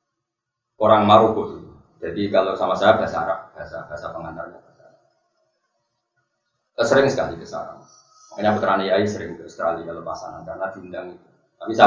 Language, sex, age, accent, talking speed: Indonesian, male, 20-39, native, 120 wpm